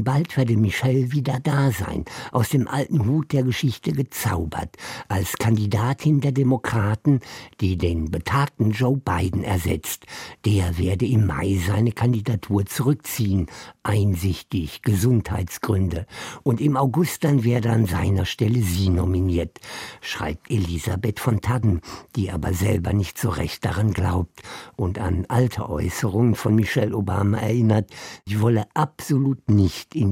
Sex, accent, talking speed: male, German, 135 wpm